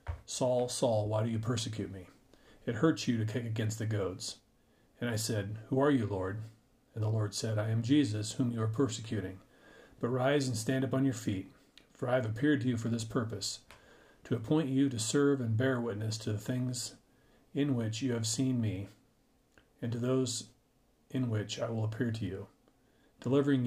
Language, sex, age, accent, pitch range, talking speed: English, male, 40-59, American, 110-130 Hz, 200 wpm